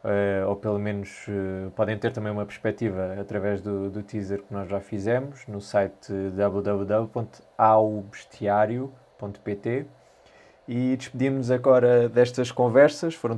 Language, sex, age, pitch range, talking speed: Portuguese, male, 20-39, 100-120 Hz, 110 wpm